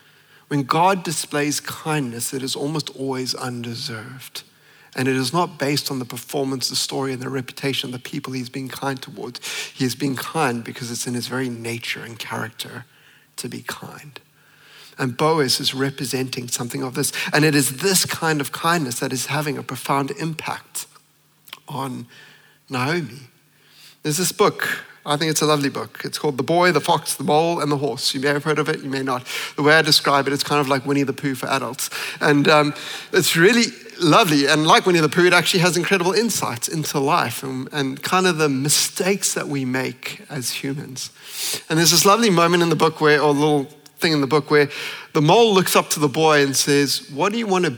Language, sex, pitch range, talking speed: English, male, 130-155 Hz, 210 wpm